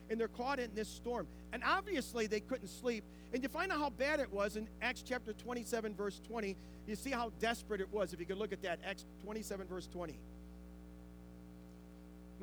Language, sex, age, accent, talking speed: English, male, 40-59, American, 200 wpm